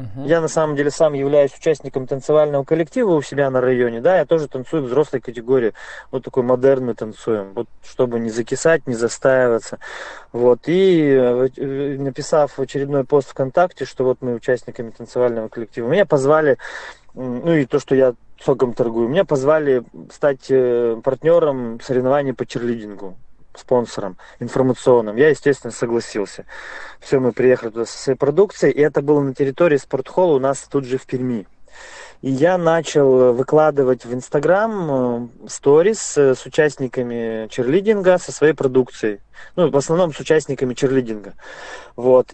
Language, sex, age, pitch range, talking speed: Russian, male, 20-39, 125-155 Hz, 145 wpm